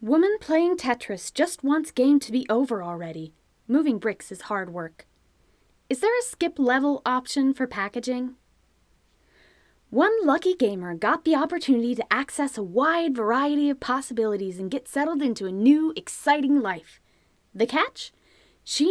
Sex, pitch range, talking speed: female, 205-305 Hz, 150 wpm